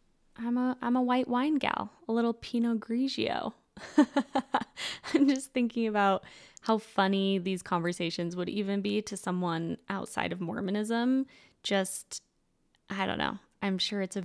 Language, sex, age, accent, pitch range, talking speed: English, female, 10-29, American, 190-235 Hz, 145 wpm